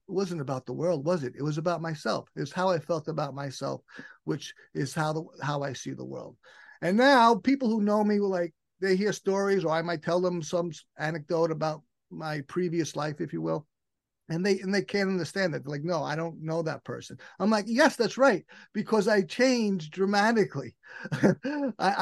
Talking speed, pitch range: 205 wpm, 165-230 Hz